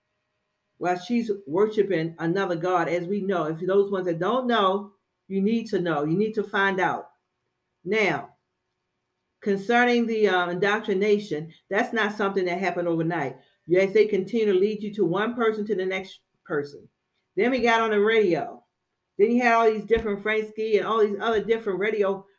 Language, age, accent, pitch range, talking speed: English, 40-59, American, 185-215 Hz, 175 wpm